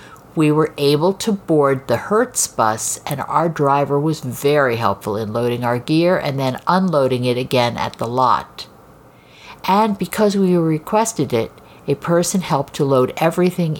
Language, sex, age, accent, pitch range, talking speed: English, female, 50-69, American, 120-160 Hz, 160 wpm